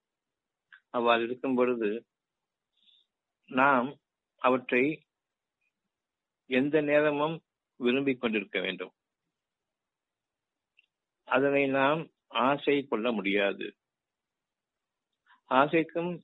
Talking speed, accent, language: 50 wpm, native, Tamil